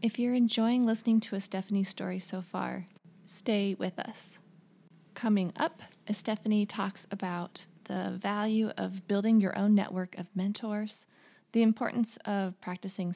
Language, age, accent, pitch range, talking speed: English, 20-39, American, 190-225 Hz, 140 wpm